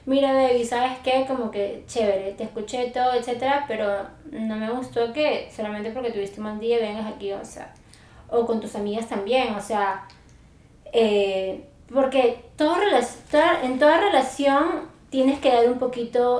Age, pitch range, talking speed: 20-39, 215-260 Hz, 160 wpm